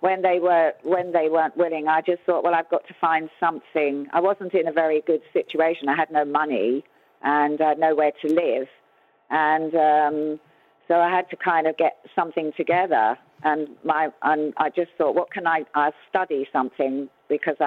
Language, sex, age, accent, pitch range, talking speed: English, female, 50-69, British, 140-165 Hz, 185 wpm